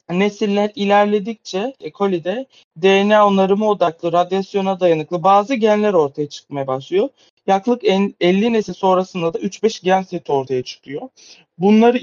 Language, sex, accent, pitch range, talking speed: Turkish, male, native, 155-195 Hz, 120 wpm